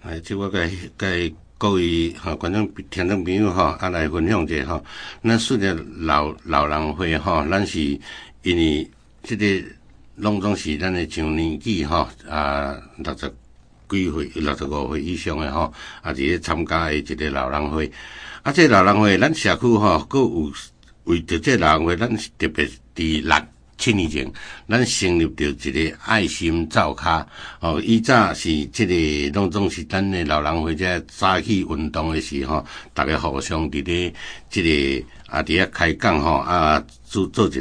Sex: male